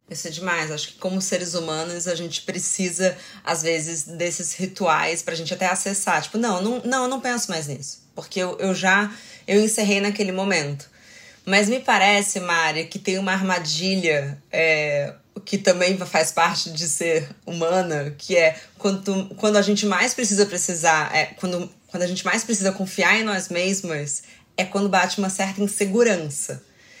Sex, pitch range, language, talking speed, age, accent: female, 180-230 Hz, Portuguese, 170 wpm, 20-39, Brazilian